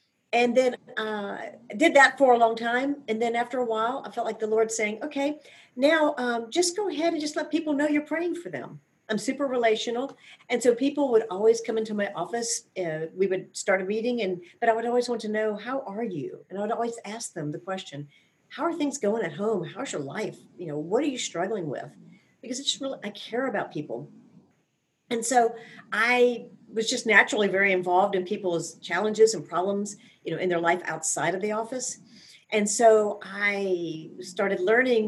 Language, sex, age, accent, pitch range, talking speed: English, female, 50-69, American, 190-245 Hz, 210 wpm